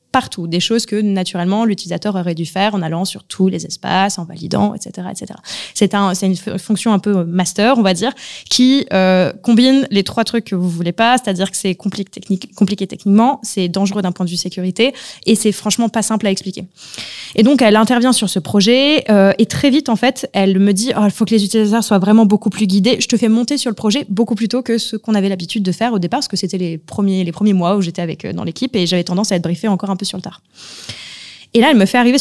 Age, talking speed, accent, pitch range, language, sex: 20-39, 265 wpm, French, 190-230 Hz, French, female